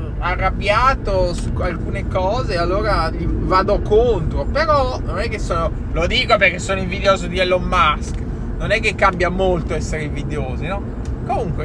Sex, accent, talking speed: male, native, 150 wpm